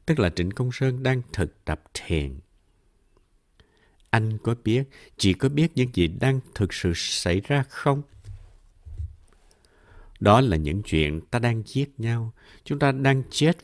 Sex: male